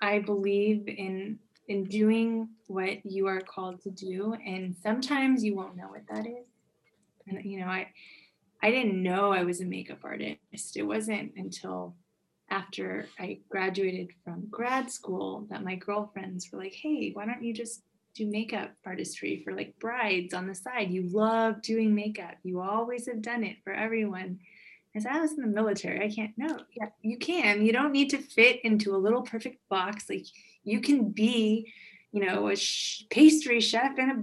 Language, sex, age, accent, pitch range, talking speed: English, female, 20-39, American, 195-240 Hz, 180 wpm